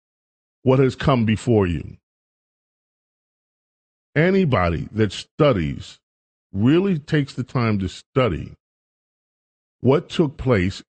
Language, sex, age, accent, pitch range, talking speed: English, male, 40-59, American, 95-125 Hz, 95 wpm